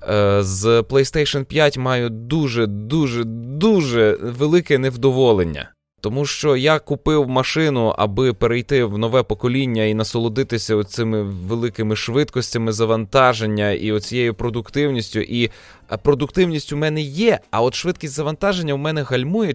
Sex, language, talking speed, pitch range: male, Ukrainian, 115 wpm, 105-135 Hz